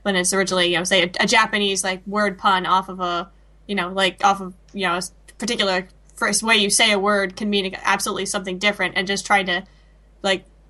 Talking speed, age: 225 wpm, 10-29